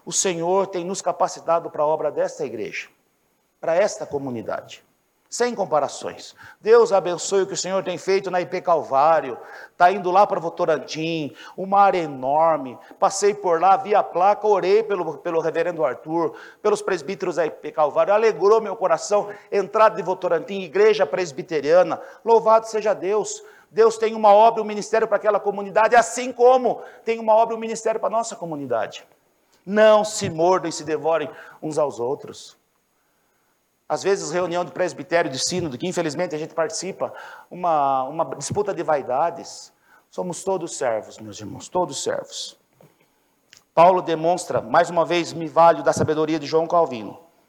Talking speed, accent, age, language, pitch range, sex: 165 wpm, Brazilian, 50-69, Portuguese, 165-205 Hz, male